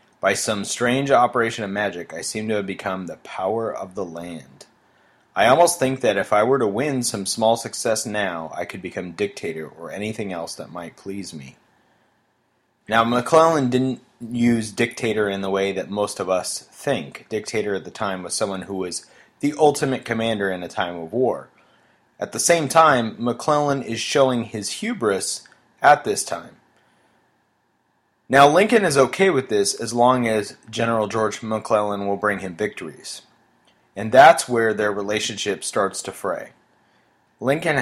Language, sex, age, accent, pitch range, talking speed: English, male, 30-49, American, 100-130 Hz, 170 wpm